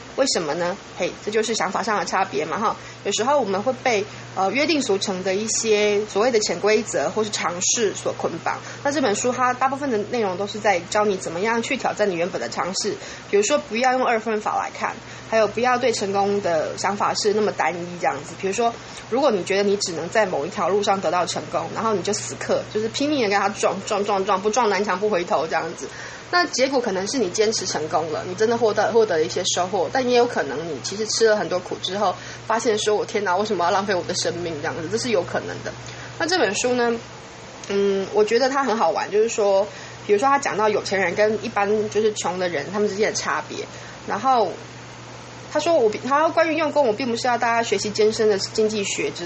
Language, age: Chinese, 20-39